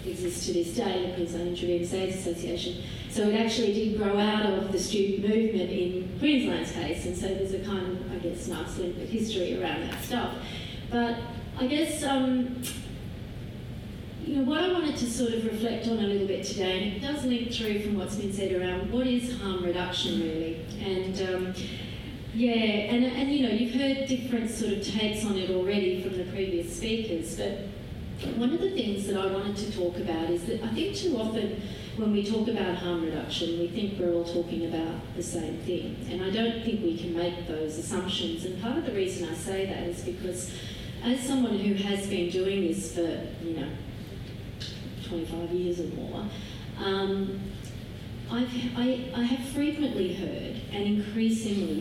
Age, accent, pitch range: 30-49, Australian, 170-220 Hz